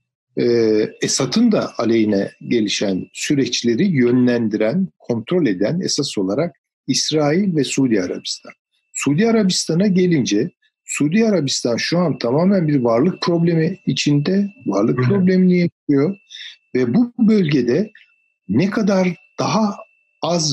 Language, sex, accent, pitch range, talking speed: Turkish, male, native, 120-195 Hz, 105 wpm